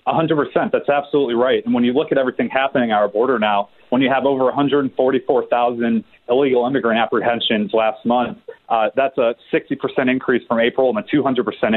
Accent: American